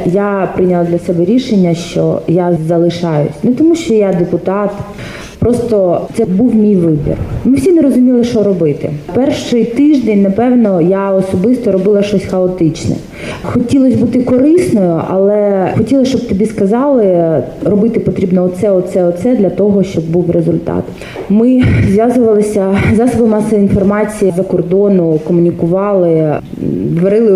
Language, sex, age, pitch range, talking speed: Ukrainian, female, 30-49, 175-220 Hz, 130 wpm